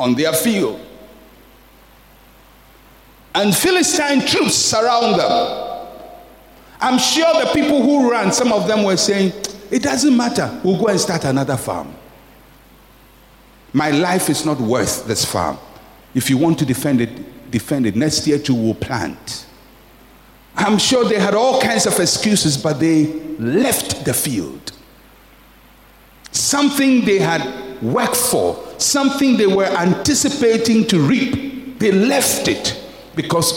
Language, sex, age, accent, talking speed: English, male, 50-69, Nigerian, 135 wpm